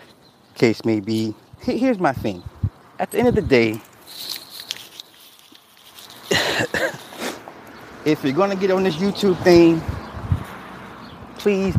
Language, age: English, 30-49